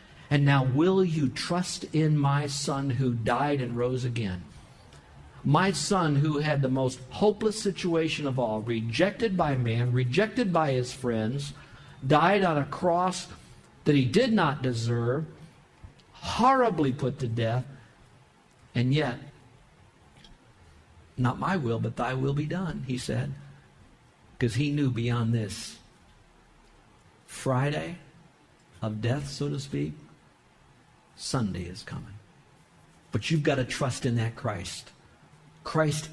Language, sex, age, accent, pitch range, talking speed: English, male, 50-69, American, 125-155 Hz, 130 wpm